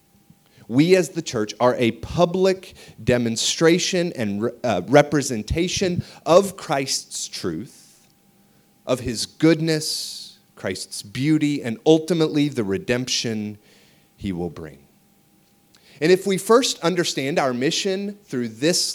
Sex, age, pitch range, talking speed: male, 30-49, 100-155 Hz, 110 wpm